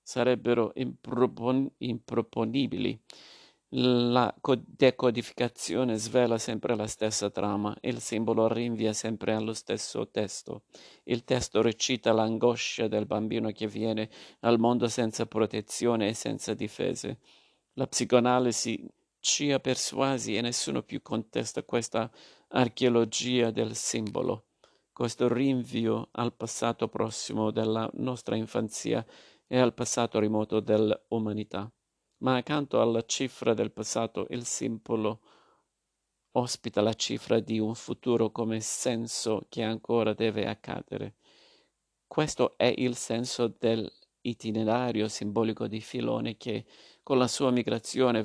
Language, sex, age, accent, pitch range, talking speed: Italian, male, 50-69, native, 110-125 Hz, 110 wpm